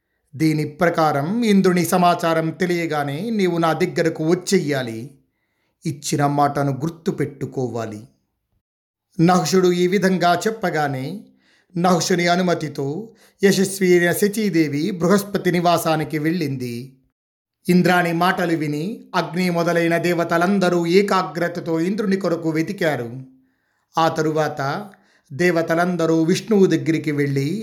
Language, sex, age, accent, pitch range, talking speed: Telugu, male, 50-69, native, 135-175 Hz, 85 wpm